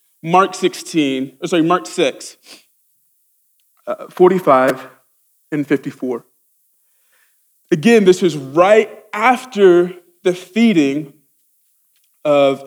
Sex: male